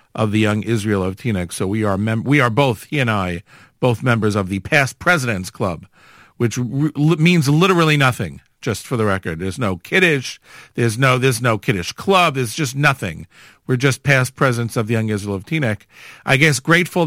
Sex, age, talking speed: male, 50-69, 205 wpm